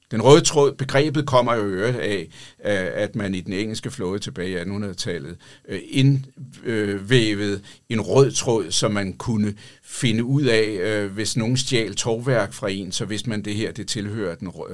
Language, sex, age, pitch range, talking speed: Danish, male, 60-79, 115-145 Hz, 165 wpm